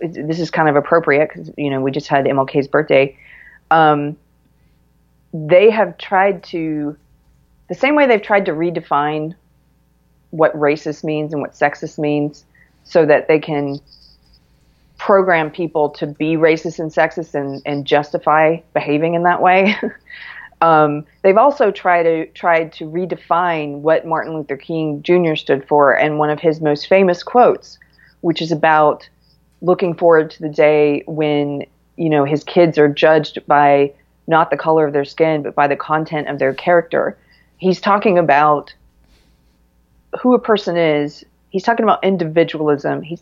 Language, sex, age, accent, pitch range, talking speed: English, female, 40-59, American, 145-170 Hz, 155 wpm